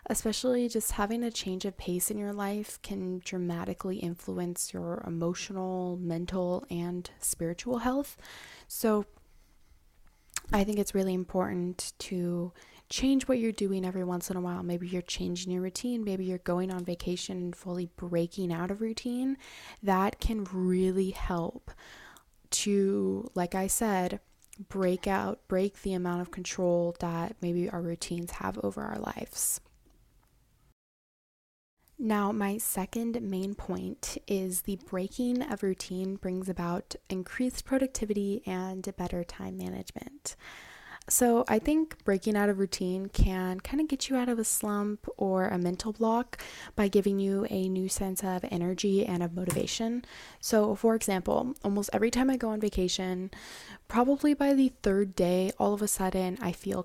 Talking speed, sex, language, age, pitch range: 150 wpm, female, English, 20-39, 180-215 Hz